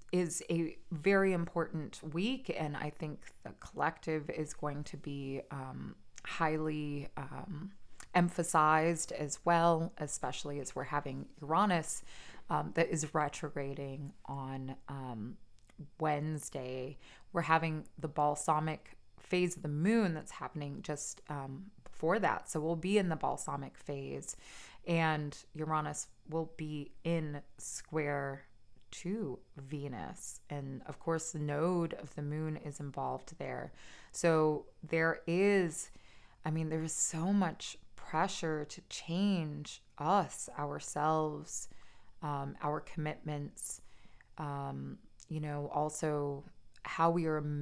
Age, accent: 20-39, American